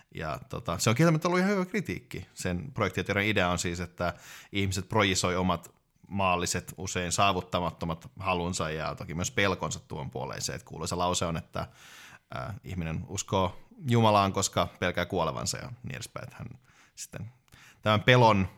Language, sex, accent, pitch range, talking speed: Finnish, male, native, 90-115 Hz, 150 wpm